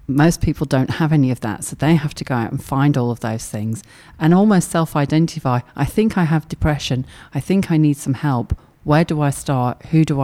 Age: 40-59